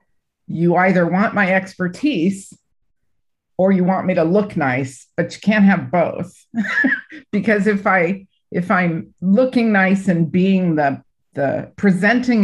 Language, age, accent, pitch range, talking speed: English, 50-69, American, 165-210 Hz, 140 wpm